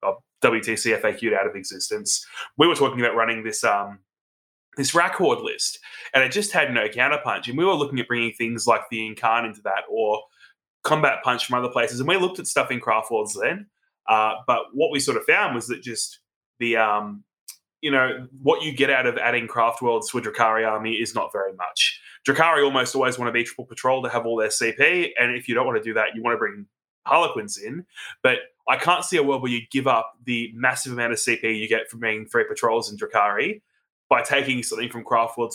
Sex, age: male, 20-39